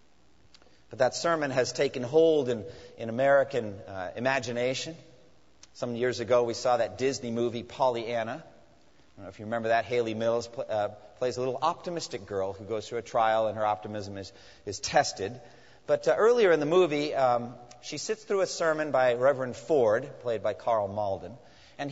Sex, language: male, English